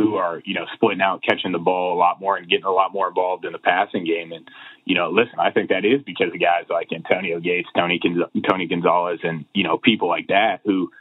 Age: 30-49